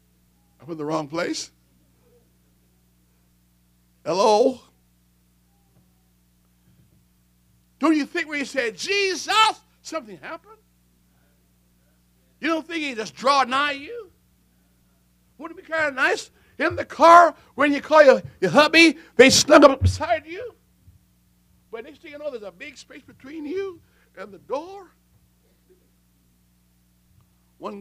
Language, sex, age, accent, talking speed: English, male, 60-79, American, 125 wpm